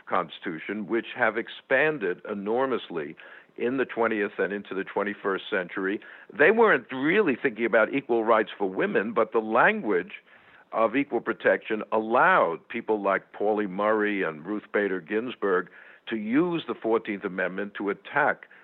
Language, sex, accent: English, male, American